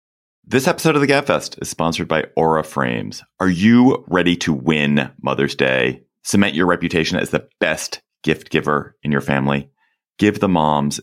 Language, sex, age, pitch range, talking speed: English, male, 30-49, 70-90 Hz, 170 wpm